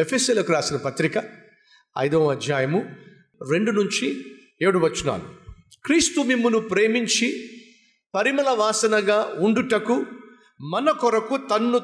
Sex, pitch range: male, 170-245 Hz